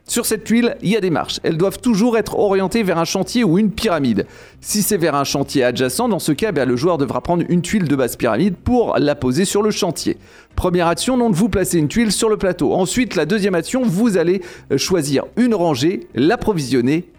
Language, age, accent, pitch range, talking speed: French, 40-59, French, 150-215 Hz, 220 wpm